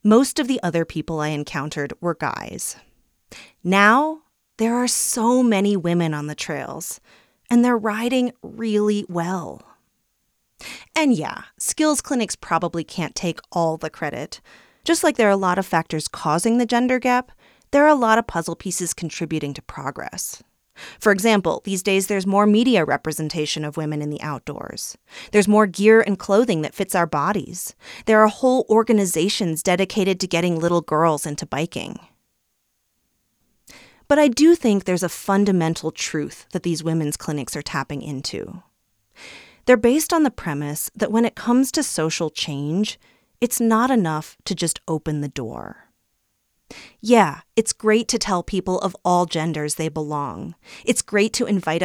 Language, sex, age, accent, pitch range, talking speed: English, female, 30-49, American, 160-225 Hz, 160 wpm